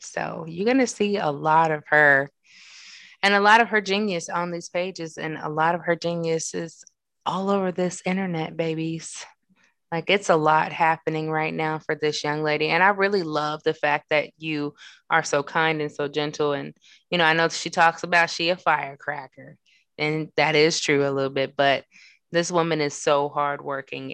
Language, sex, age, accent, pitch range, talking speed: English, female, 20-39, American, 150-190 Hz, 195 wpm